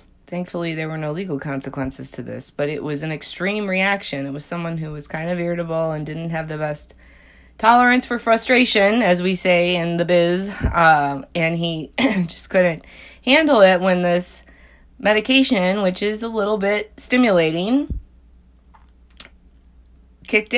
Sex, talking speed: female, 155 wpm